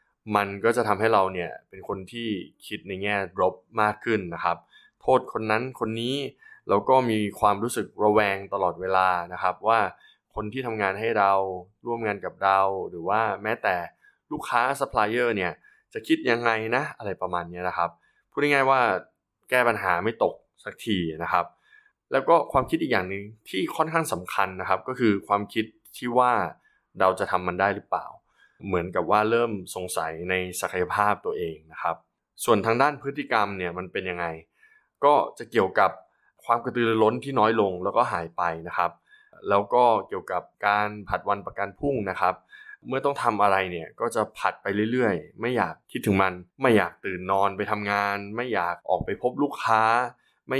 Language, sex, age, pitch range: Thai, male, 20-39, 95-130 Hz